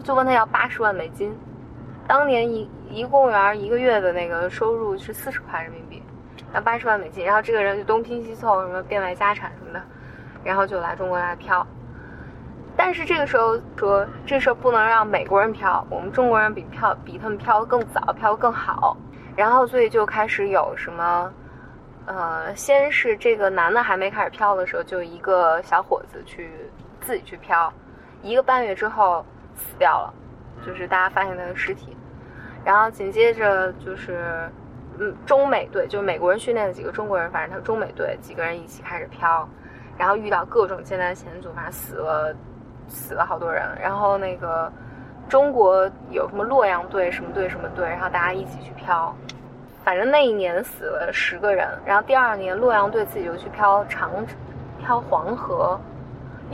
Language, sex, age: Chinese, female, 20-39